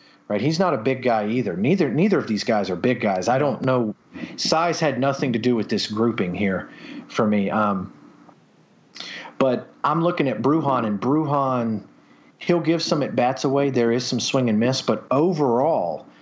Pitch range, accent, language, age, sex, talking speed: 105-135 Hz, American, English, 40-59, male, 185 wpm